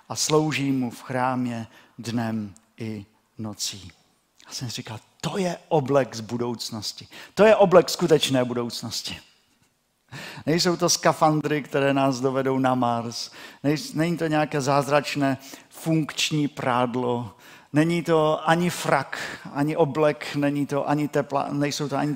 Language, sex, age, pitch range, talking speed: Czech, male, 50-69, 115-150 Hz, 120 wpm